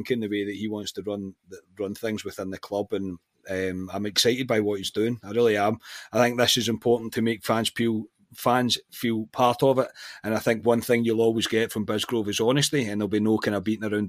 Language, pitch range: English, 100-120 Hz